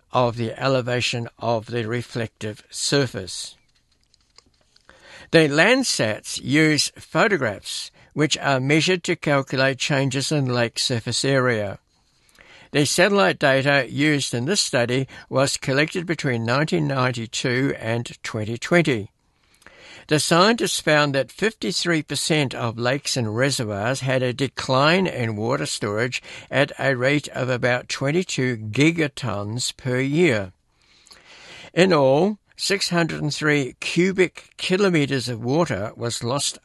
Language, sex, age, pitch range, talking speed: English, male, 60-79, 120-150 Hz, 110 wpm